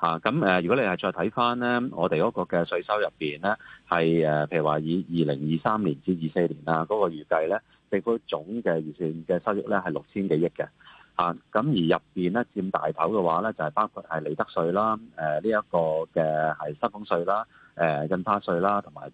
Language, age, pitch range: Chinese, 30-49, 80-105 Hz